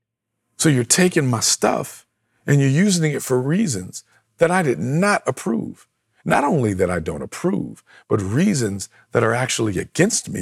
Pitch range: 105-120 Hz